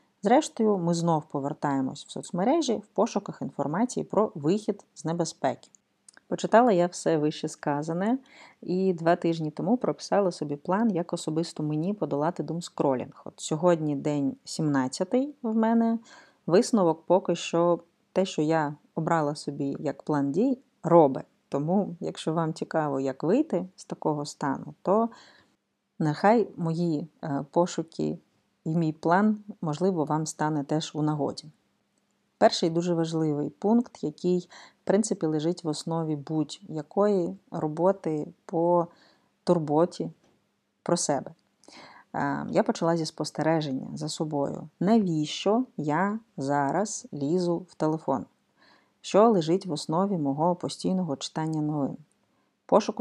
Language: Ukrainian